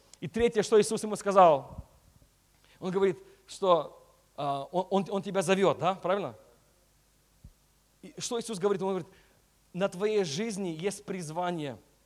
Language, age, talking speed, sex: Russian, 40-59, 140 wpm, male